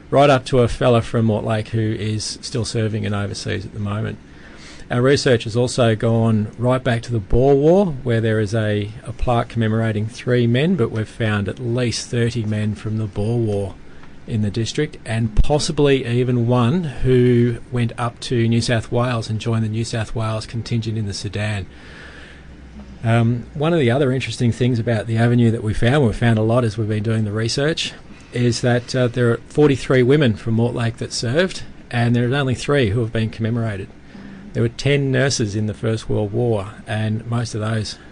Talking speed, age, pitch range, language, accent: 200 wpm, 40-59, 110-120 Hz, English, Australian